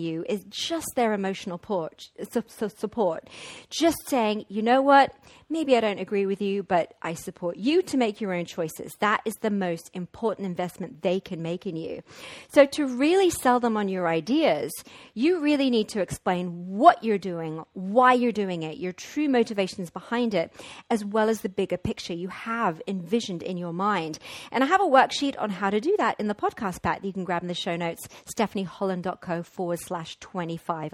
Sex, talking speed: female, 195 wpm